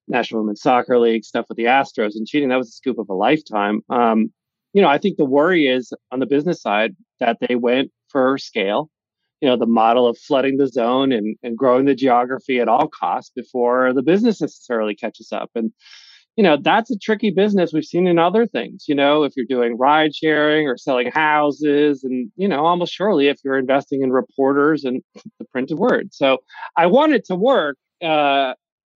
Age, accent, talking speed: 30-49, American, 205 wpm